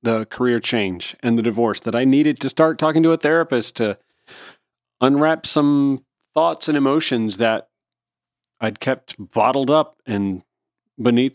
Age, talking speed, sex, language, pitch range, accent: 40-59, 150 wpm, male, English, 115-140 Hz, American